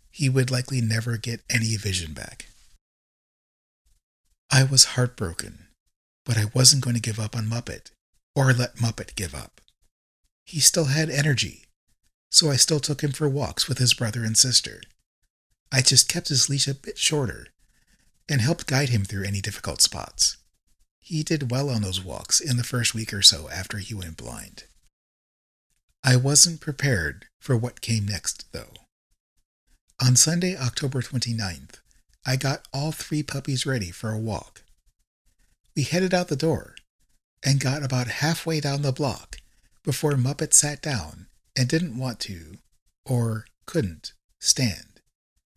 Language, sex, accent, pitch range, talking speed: English, male, American, 110-145 Hz, 155 wpm